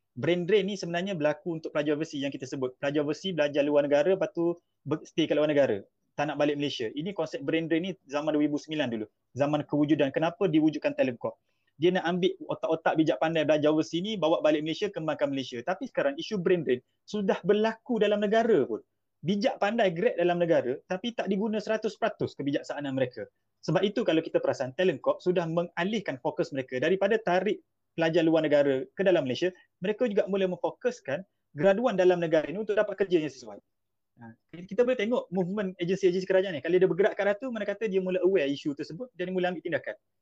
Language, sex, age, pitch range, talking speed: Malay, male, 30-49, 155-200 Hz, 190 wpm